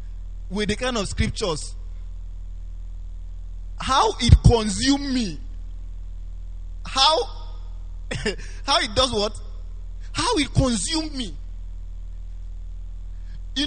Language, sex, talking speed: English, male, 85 wpm